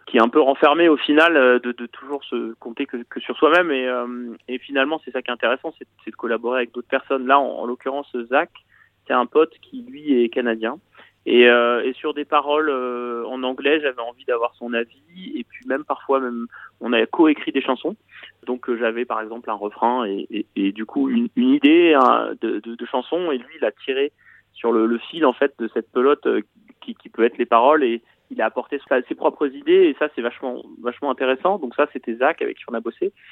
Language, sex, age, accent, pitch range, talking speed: French, male, 30-49, French, 120-160 Hz, 235 wpm